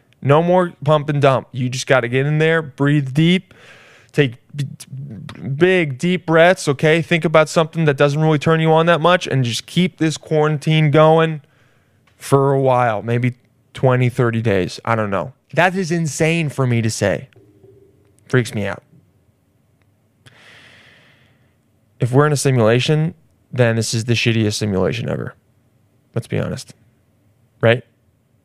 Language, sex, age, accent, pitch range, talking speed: English, male, 20-39, American, 115-155 Hz, 150 wpm